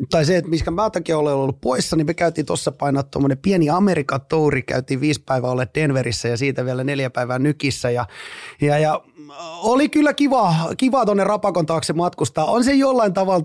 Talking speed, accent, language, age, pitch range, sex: 195 wpm, native, Finnish, 30-49, 140-185 Hz, male